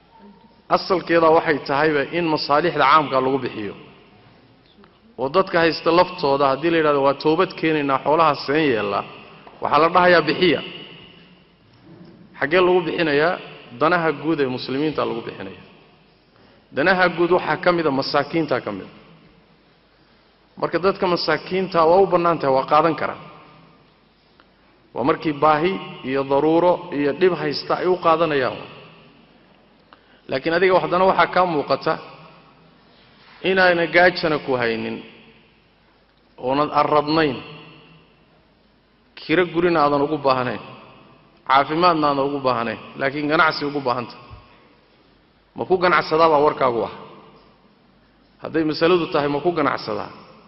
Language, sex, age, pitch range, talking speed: English, male, 50-69, 140-175 Hz, 45 wpm